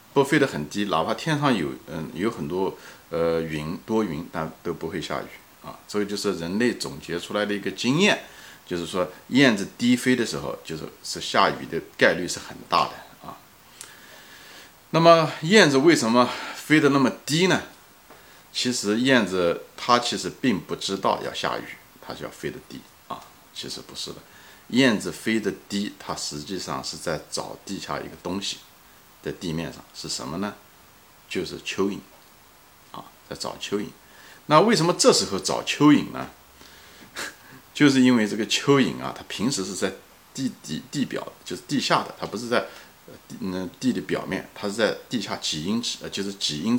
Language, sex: Chinese, male